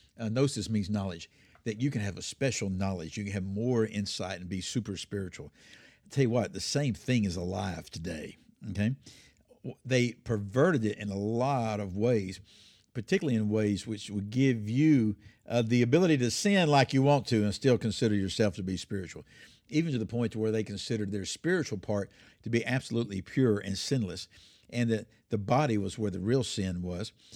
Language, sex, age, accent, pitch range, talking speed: English, male, 60-79, American, 100-125 Hz, 190 wpm